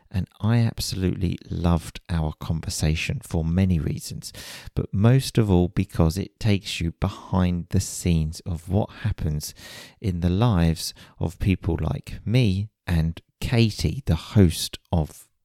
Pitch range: 85-110 Hz